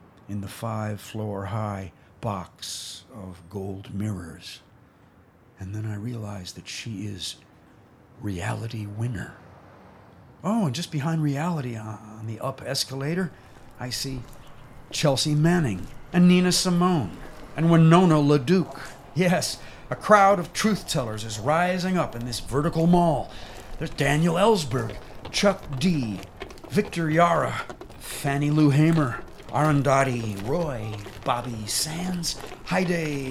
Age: 50-69